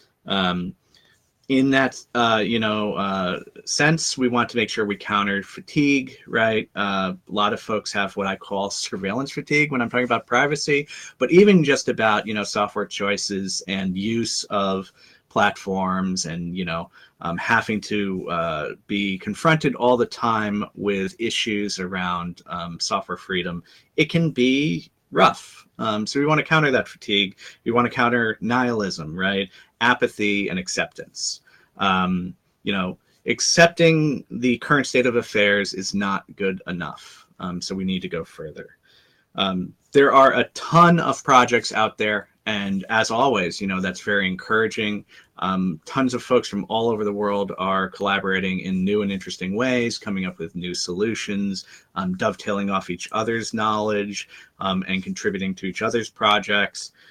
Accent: American